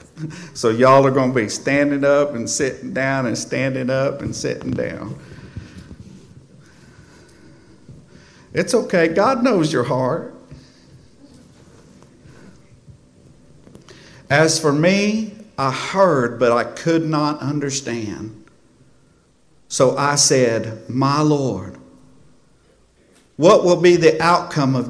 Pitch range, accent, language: 115-150 Hz, American, English